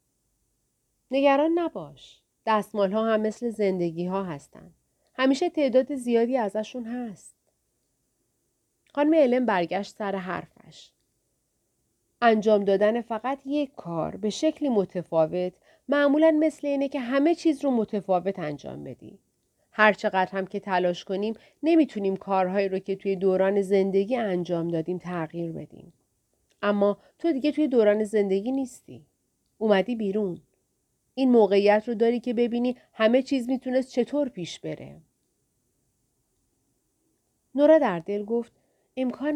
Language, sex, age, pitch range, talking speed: Persian, female, 40-59, 190-260 Hz, 120 wpm